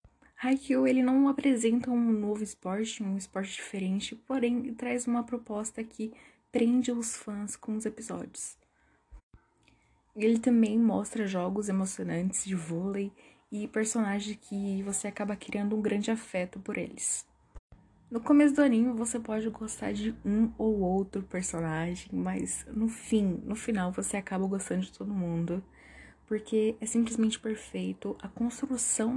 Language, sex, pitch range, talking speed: Portuguese, female, 195-230 Hz, 140 wpm